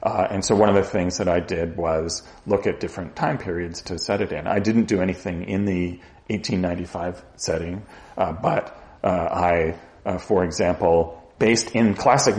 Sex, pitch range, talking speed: male, 85-100 Hz, 185 wpm